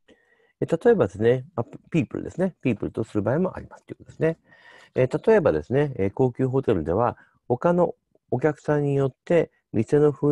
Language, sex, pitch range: Japanese, male, 115-170 Hz